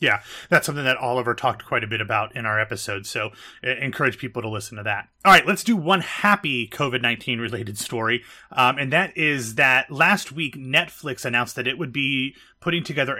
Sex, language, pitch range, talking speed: male, English, 120-150 Hz, 200 wpm